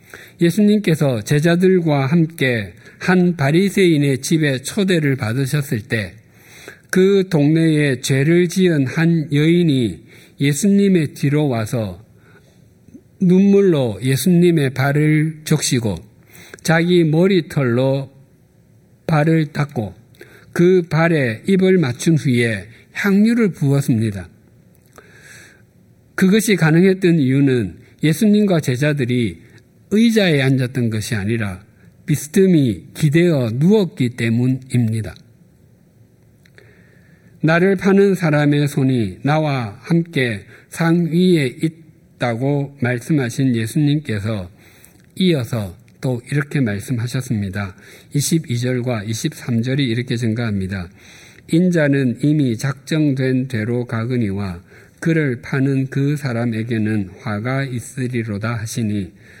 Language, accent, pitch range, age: Korean, native, 120-165 Hz, 50-69